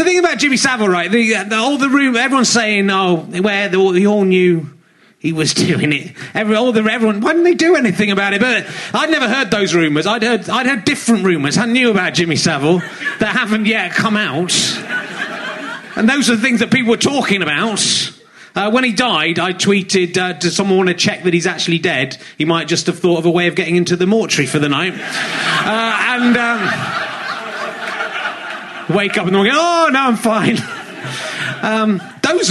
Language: English